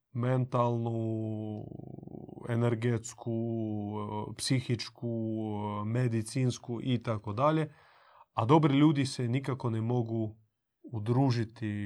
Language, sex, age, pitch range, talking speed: Croatian, male, 30-49, 110-135 Hz, 75 wpm